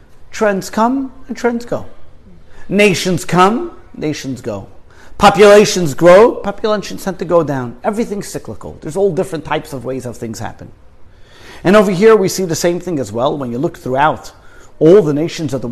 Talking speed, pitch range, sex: 175 wpm, 125-190 Hz, male